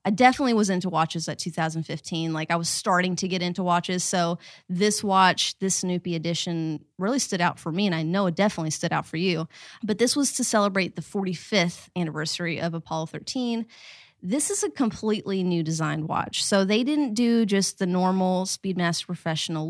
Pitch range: 170-210 Hz